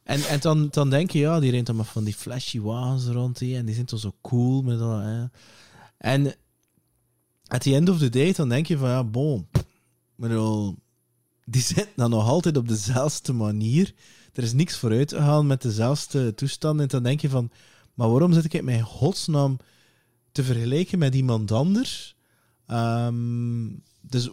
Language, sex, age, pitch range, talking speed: English, male, 20-39, 115-150 Hz, 185 wpm